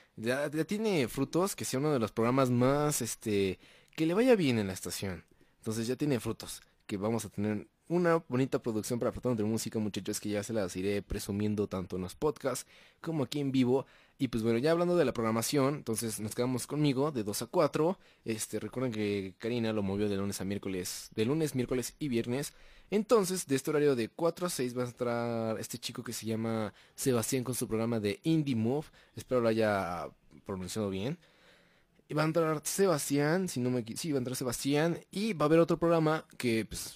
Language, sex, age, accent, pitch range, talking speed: Spanish, male, 20-39, Mexican, 105-145 Hz, 210 wpm